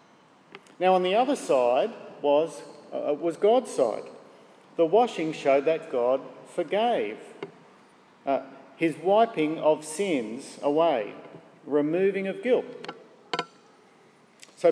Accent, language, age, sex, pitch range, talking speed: Australian, English, 50-69, male, 150-210 Hz, 105 wpm